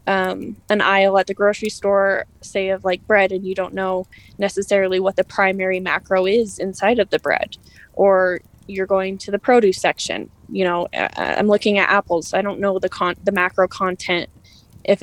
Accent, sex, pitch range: American, female, 185-210 Hz